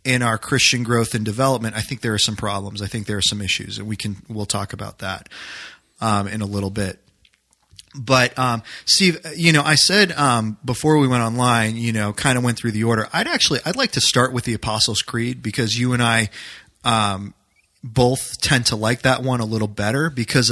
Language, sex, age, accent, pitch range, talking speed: English, male, 30-49, American, 105-135 Hz, 225 wpm